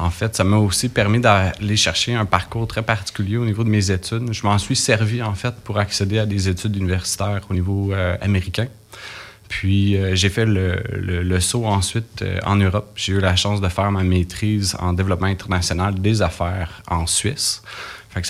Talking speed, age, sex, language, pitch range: 205 wpm, 30-49, male, French, 90-105 Hz